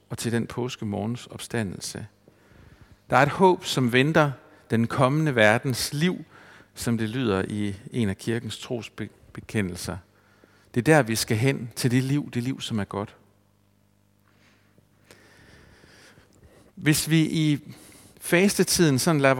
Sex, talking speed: male, 135 wpm